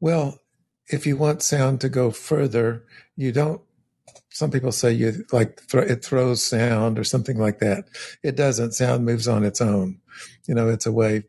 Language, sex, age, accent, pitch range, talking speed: English, male, 50-69, American, 110-130 Hz, 180 wpm